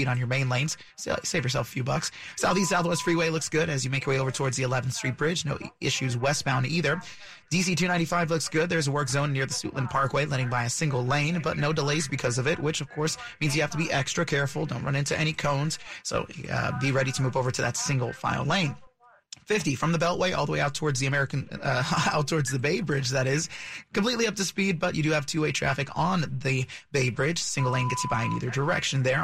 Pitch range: 135-170 Hz